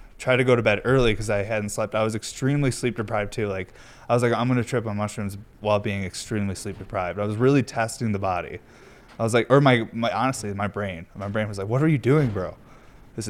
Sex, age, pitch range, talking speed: male, 20-39, 105-120 Hz, 255 wpm